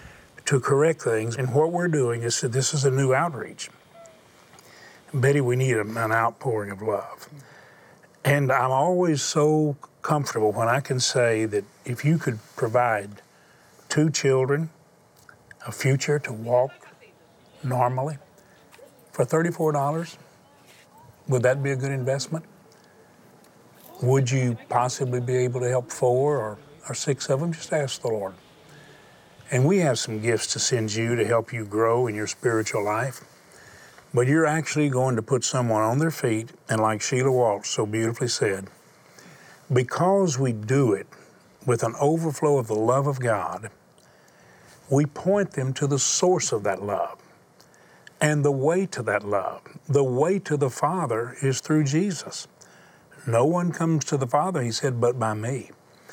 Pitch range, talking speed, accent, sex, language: 115-150 Hz, 155 wpm, American, male, English